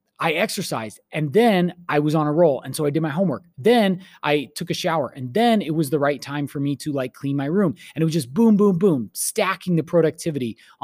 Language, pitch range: English, 140-180 Hz